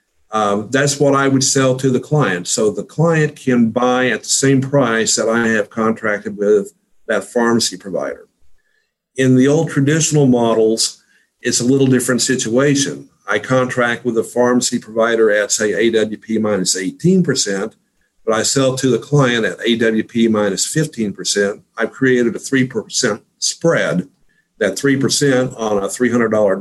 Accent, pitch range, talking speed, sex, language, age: American, 110-135 Hz, 150 wpm, male, English, 50-69